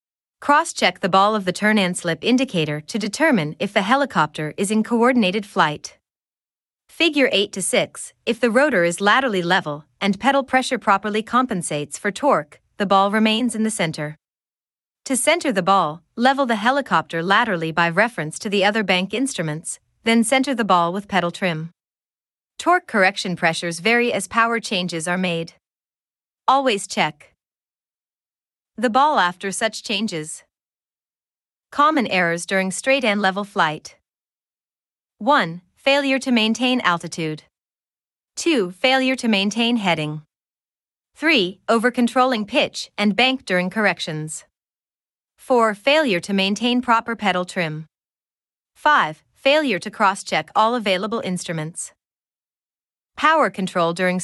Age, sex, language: 30-49, female, English